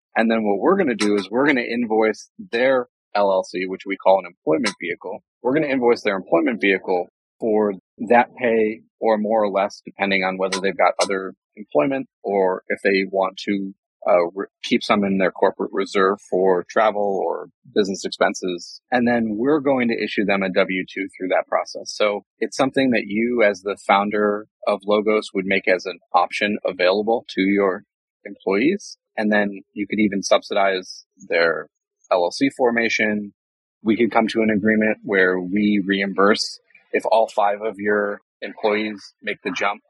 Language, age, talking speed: English, 30-49, 175 wpm